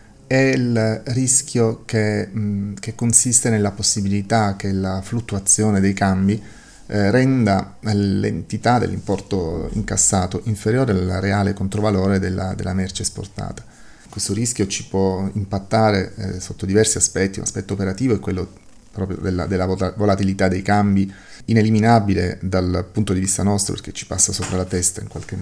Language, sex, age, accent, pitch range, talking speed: Italian, male, 30-49, native, 95-110 Hz, 145 wpm